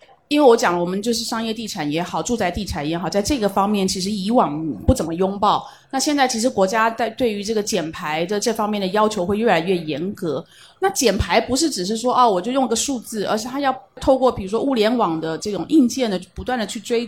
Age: 30-49